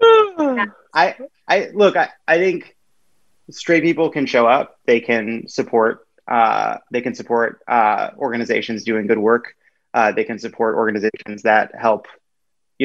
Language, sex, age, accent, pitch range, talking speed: English, male, 30-49, American, 115-165 Hz, 145 wpm